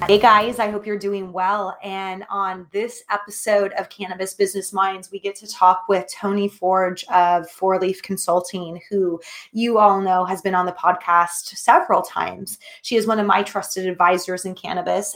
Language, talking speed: English, 180 wpm